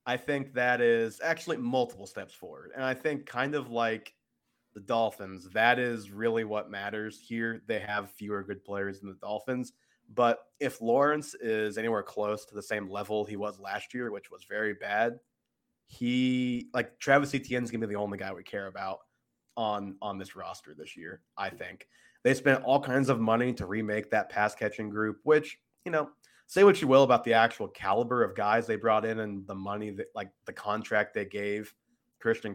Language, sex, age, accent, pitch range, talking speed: English, male, 20-39, American, 105-125 Hz, 195 wpm